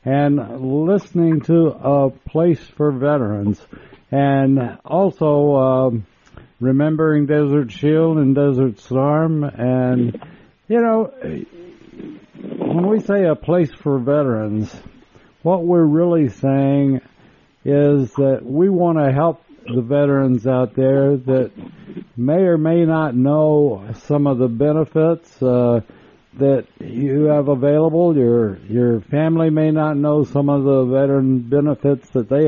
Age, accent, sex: 60-79, American, male